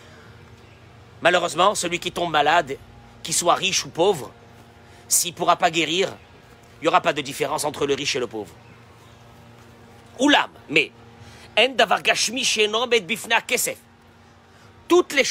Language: French